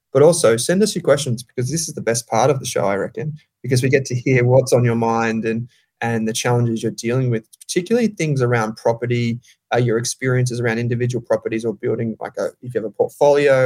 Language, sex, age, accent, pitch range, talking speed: English, male, 20-39, Australian, 115-130 Hz, 230 wpm